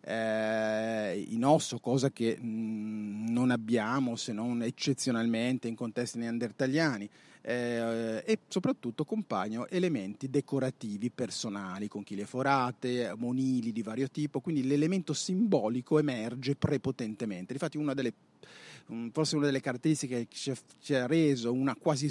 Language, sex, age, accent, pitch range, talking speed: Italian, male, 30-49, native, 115-150 Hz, 130 wpm